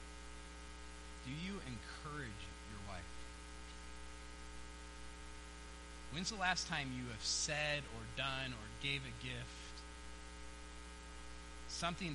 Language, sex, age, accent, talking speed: English, male, 30-49, American, 95 wpm